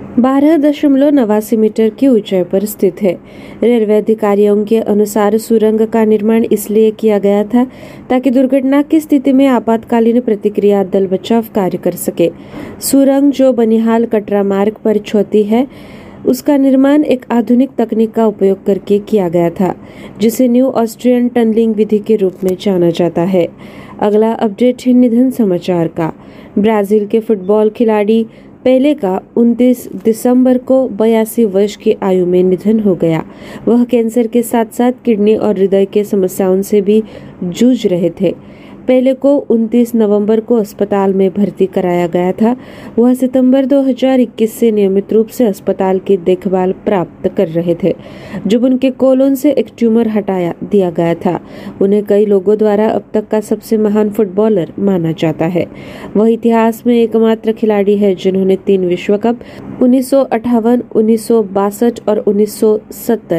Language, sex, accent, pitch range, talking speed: Marathi, female, native, 200-240 Hz, 135 wpm